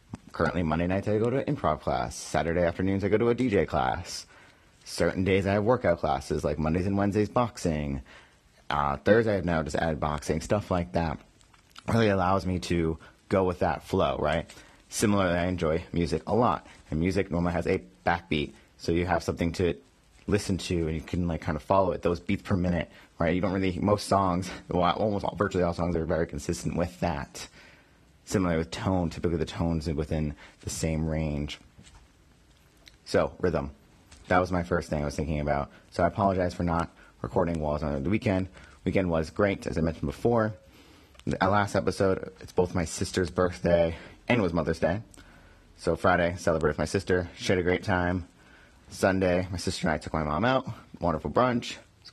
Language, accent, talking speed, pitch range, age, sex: English, American, 200 wpm, 80-95 Hz, 30-49, male